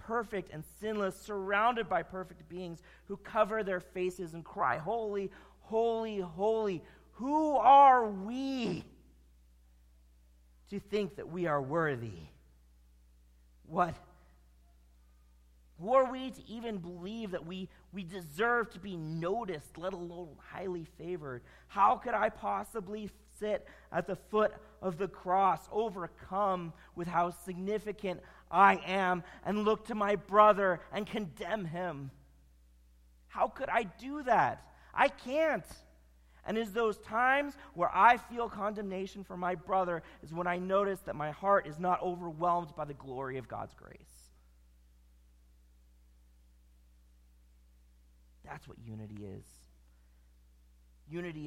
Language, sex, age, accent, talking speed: English, male, 40-59, American, 125 wpm